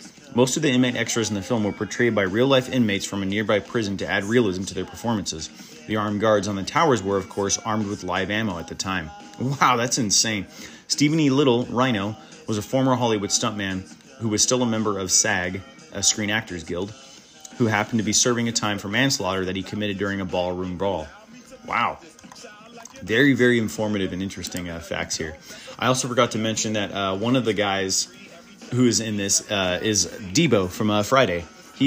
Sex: male